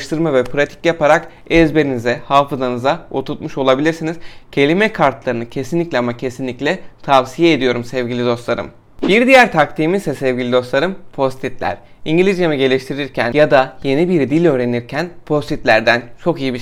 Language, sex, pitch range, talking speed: Turkish, male, 125-165 Hz, 130 wpm